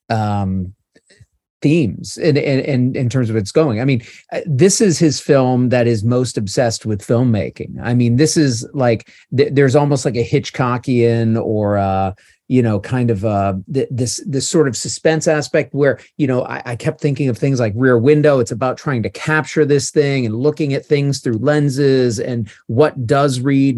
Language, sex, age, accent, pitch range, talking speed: English, male, 30-49, American, 110-145 Hz, 185 wpm